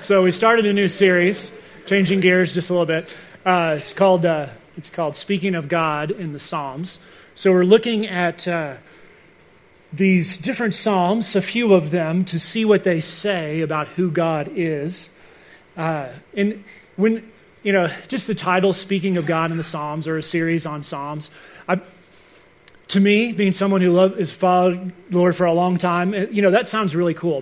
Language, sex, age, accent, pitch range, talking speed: English, male, 30-49, American, 170-200 Hz, 185 wpm